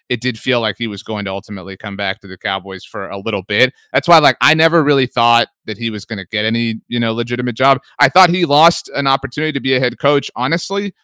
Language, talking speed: English, 260 wpm